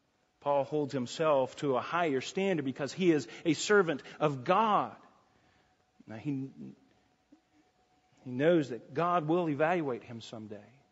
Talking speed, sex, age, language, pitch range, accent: 130 wpm, male, 40-59, English, 135-200 Hz, American